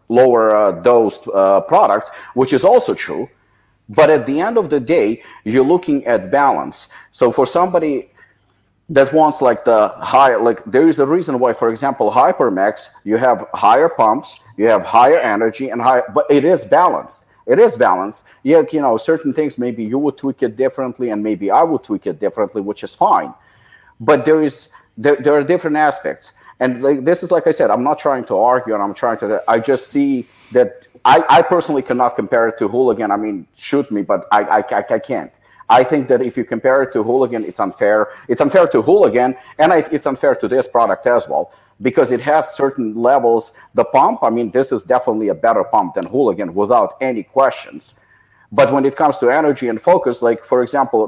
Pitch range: 120-155 Hz